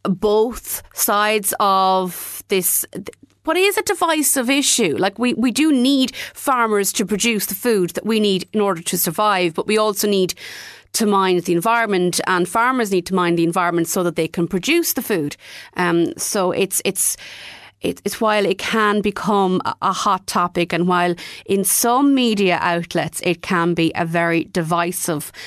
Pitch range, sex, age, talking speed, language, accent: 170-210 Hz, female, 30-49, 170 wpm, English, Irish